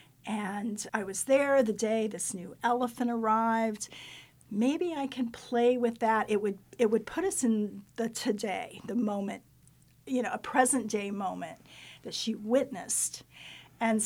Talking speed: 155 wpm